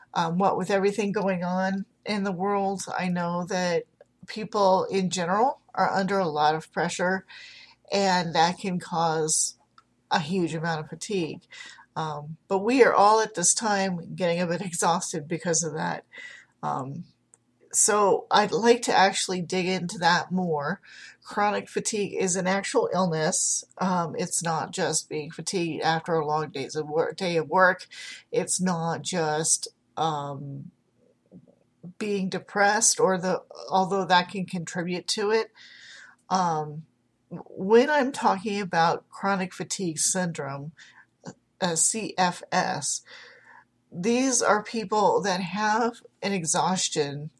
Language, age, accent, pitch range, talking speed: English, 40-59, American, 165-200 Hz, 130 wpm